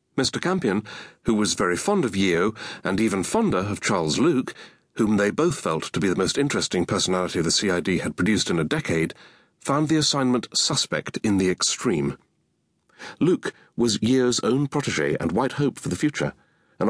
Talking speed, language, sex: 180 wpm, English, male